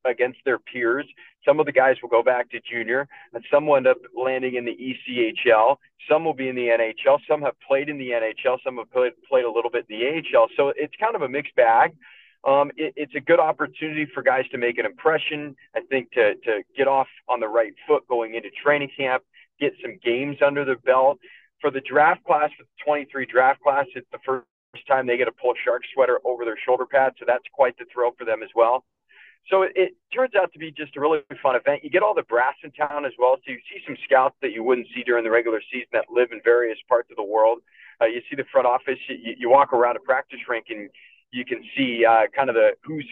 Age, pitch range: 40-59, 125-180 Hz